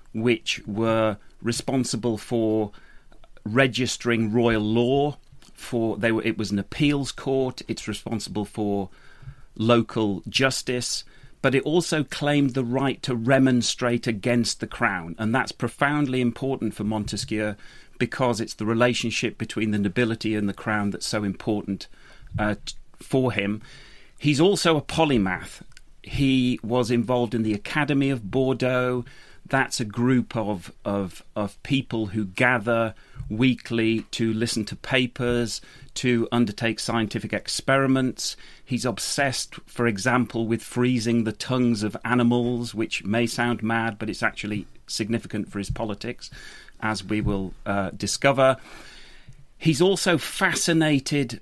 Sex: male